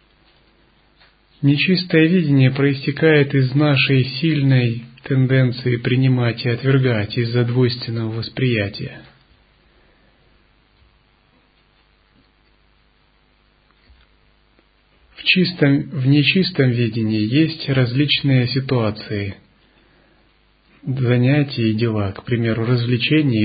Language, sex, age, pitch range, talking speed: Russian, male, 30-49, 115-140 Hz, 70 wpm